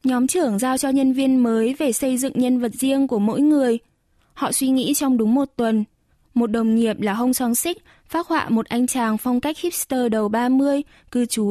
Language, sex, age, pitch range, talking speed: Vietnamese, female, 10-29, 225-275 Hz, 220 wpm